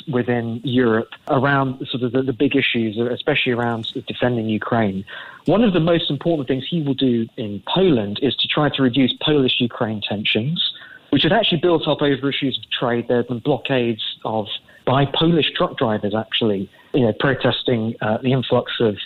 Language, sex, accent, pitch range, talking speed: English, male, British, 120-155 Hz, 185 wpm